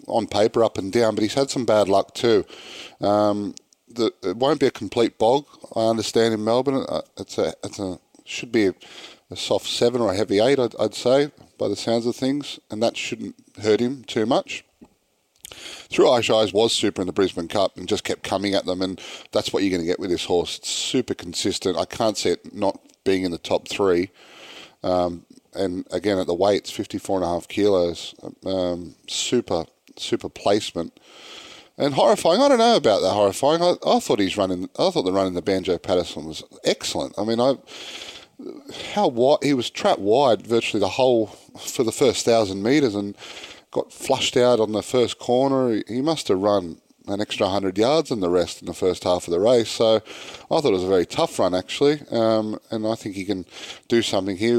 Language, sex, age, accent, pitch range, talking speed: English, male, 30-49, Australian, 95-125 Hz, 205 wpm